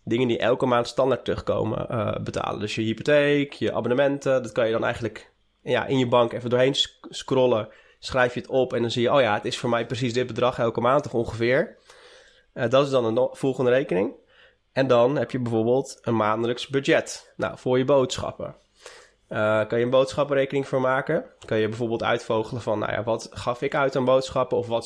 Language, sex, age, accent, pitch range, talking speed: Dutch, male, 20-39, Dutch, 115-135 Hz, 210 wpm